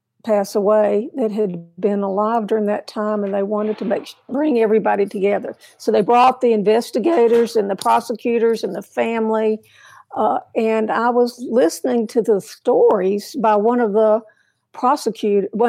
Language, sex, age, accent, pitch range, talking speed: English, female, 60-79, American, 210-240 Hz, 155 wpm